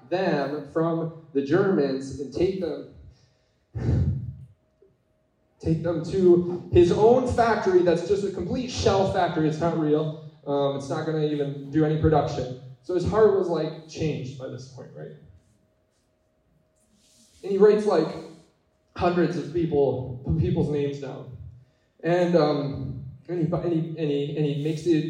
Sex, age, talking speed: male, 20-39, 155 wpm